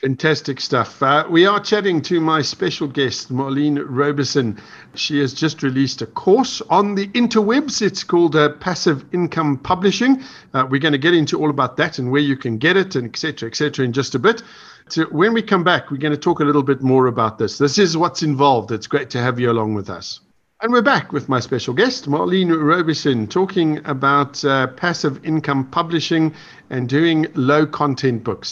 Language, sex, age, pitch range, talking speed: English, male, 50-69, 130-165 Hz, 205 wpm